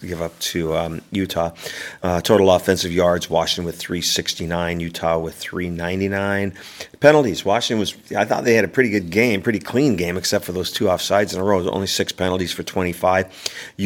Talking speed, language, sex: 180 wpm, English, male